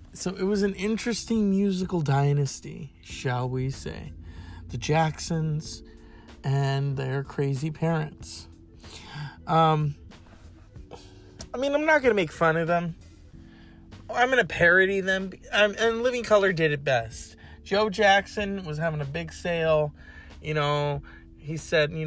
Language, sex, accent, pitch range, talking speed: English, male, American, 115-170 Hz, 135 wpm